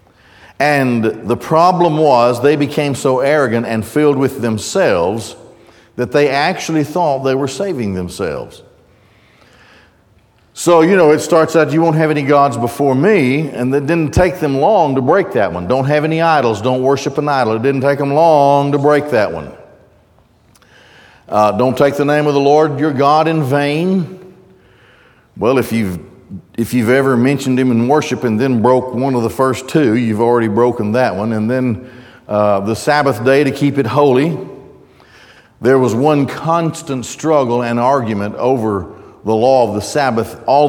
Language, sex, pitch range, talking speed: English, male, 115-145 Hz, 175 wpm